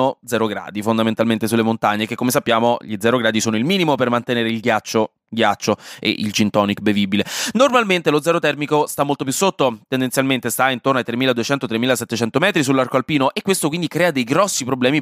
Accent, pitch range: native, 115-160 Hz